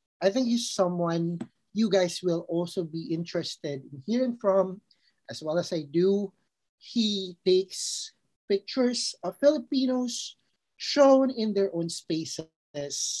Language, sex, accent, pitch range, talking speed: Filipino, male, native, 155-195 Hz, 125 wpm